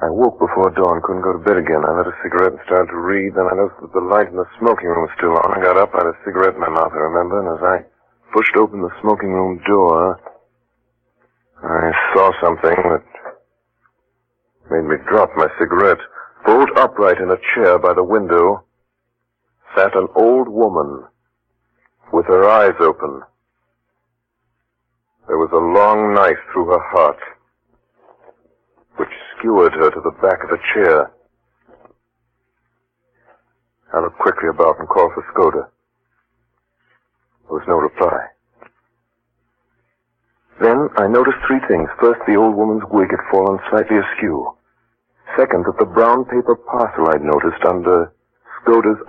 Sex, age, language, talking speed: male, 50-69, English, 160 wpm